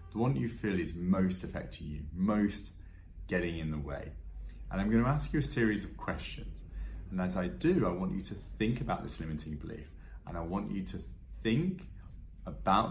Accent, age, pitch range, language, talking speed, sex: British, 30-49, 80-110 Hz, English, 195 wpm, male